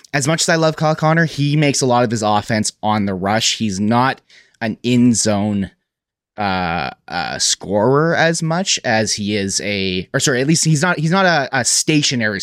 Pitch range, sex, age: 110-145 Hz, male, 30-49